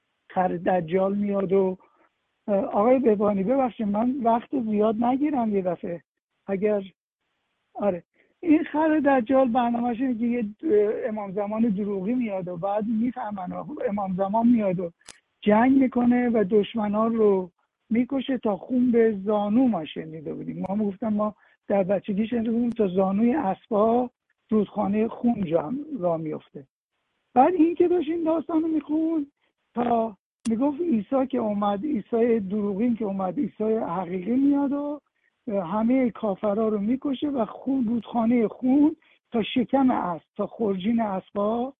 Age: 60-79